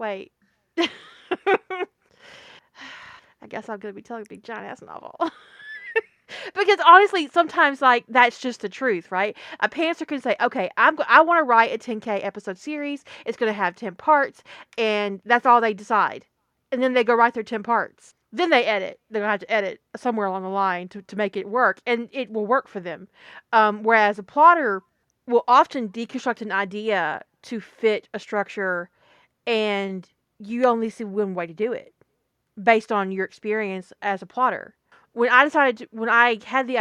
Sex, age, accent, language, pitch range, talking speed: female, 40-59, American, English, 195-250 Hz, 190 wpm